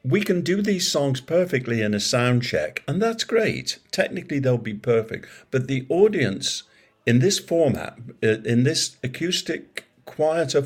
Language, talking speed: English, 150 wpm